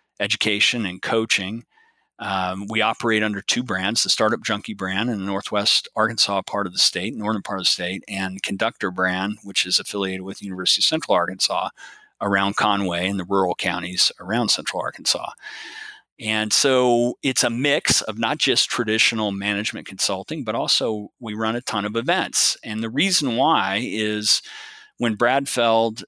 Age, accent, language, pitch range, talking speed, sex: 40-59, American, English, 100-115 Hz, 170 wpm, male